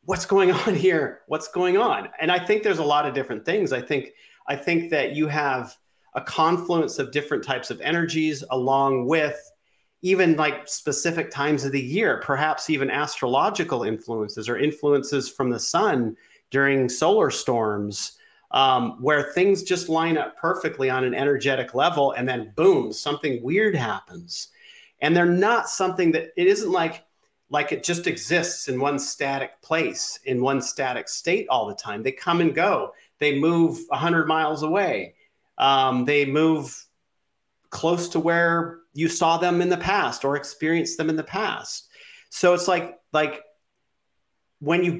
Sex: male